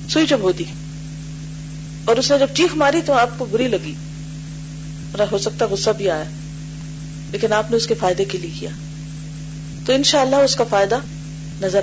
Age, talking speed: 40-59, 100 wpm